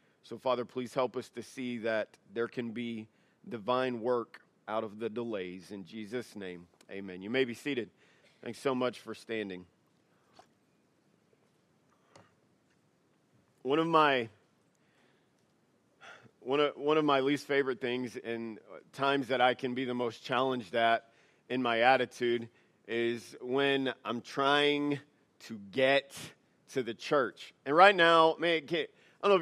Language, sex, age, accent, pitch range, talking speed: English, male, 40-59, American, 120-145 Hz, 145 wpm